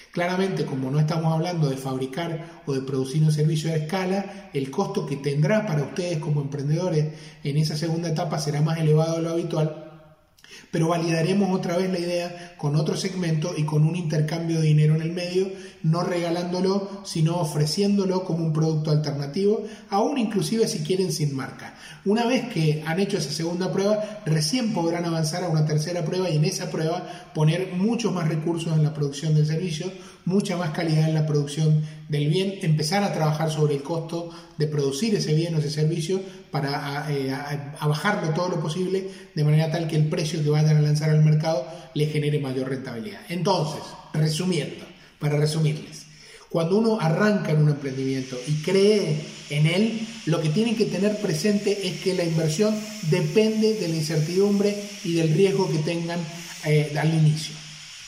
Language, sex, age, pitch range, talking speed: Spanish, male, 20-39, 155-190 Hz, 175 wpm